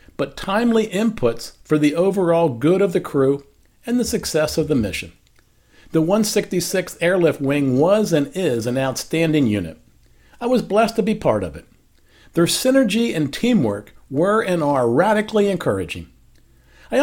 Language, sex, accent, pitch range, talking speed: English, male, American, 140-215 Hz, 155 wpm